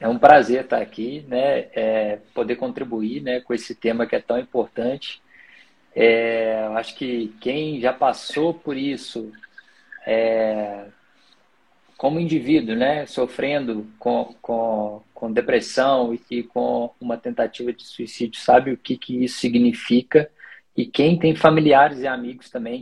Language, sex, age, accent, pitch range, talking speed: Portuguese, male, 20-39, Brazilian, 115-135 Hz, 135 wpm